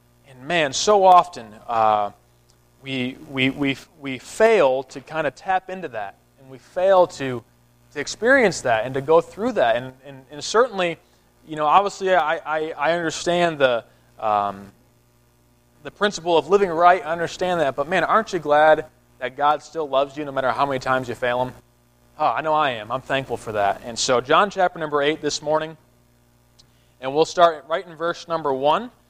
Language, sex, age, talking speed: English, male, 20-39, 190 wpm